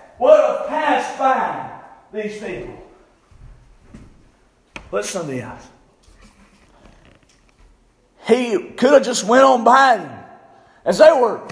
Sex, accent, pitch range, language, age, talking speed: male, American, 255-310 Hz, English, 40-59, 110 wpm